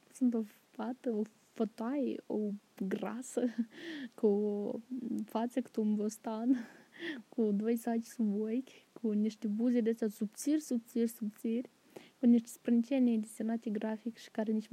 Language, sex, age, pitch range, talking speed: Romanian, female, 20-39, 220-255 Hz, 130 wpm